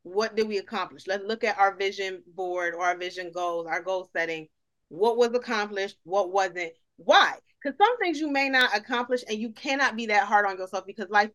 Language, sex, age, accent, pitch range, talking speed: English, female, 30-49, American, 205-280 Hz, 210 wpm